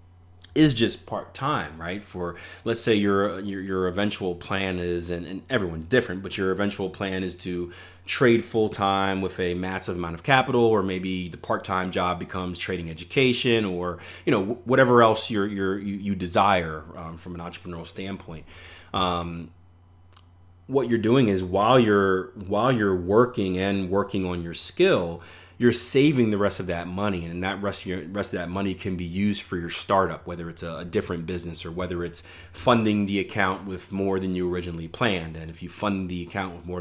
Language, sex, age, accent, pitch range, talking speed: English, male, 30-49, American, 90-110 Hz, 185 wpm